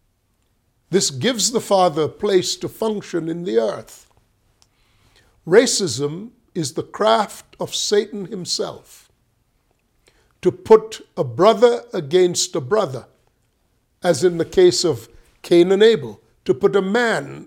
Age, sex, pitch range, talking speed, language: 50-69, male, 125-200 Hz, 125 wpm, English